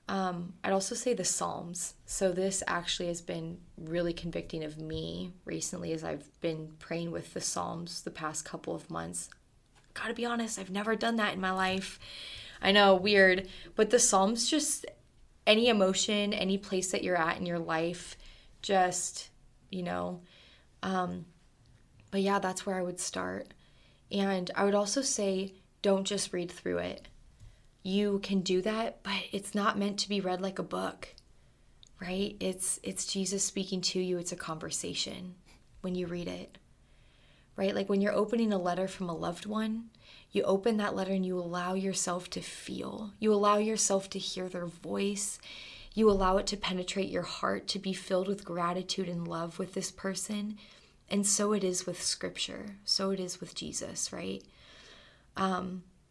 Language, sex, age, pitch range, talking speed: English, female, 20-39, 175-200 Hz, 175 wpm